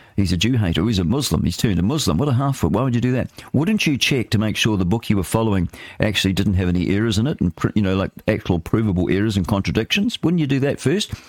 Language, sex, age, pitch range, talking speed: English, male, 50-69, 90-115 Hz, 270 wpm